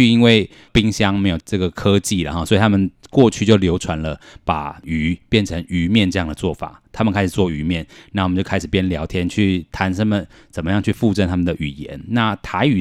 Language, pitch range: Chinese, 85-100 Hz